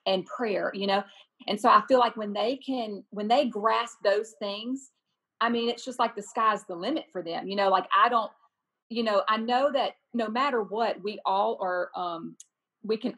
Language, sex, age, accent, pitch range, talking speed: English, female, 40-59, American, 195-235 Hz, 215 wpm